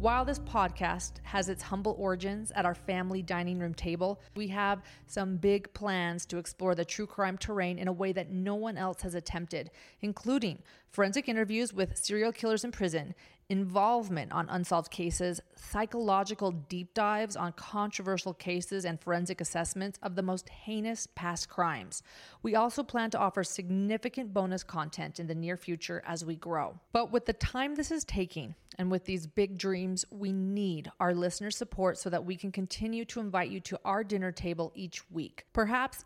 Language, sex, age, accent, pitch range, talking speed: English, female, 30-49, American, 180-215 Hz, 180 wpm